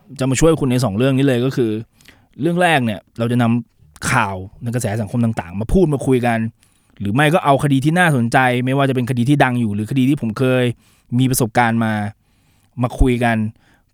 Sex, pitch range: male, 115-150 Hz